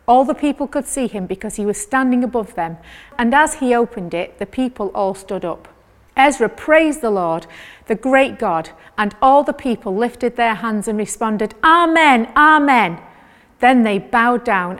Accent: British